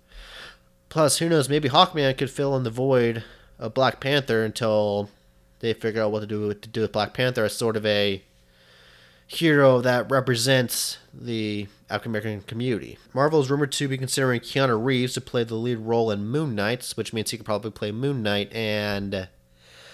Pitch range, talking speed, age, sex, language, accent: 105-135 Hz, 185 wpm, 30-49, male, English, American